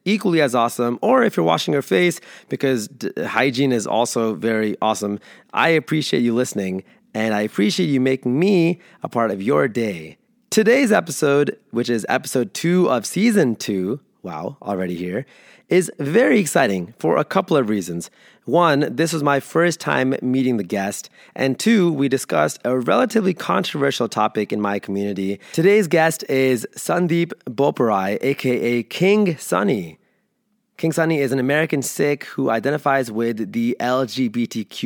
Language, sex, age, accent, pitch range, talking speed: English, male, 20-39, American, 115-155 Hz, 155 wpm